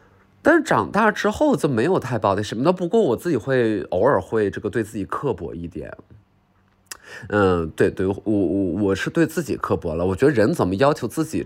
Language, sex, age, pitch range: Chinese, male, 20-39, 90-120 Hz